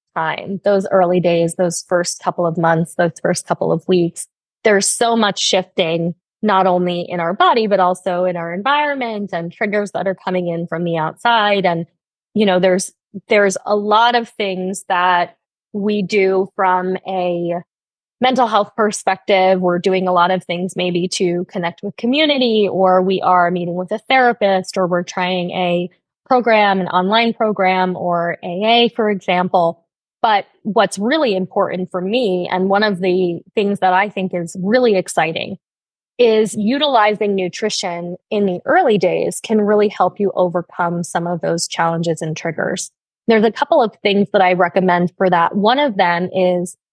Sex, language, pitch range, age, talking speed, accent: female, English, 175-210 Hz, 20-39, 170 wpm, American